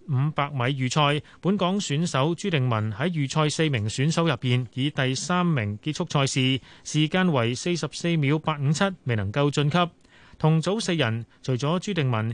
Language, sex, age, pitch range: Chinese, male, 30-49, 125-170 Hz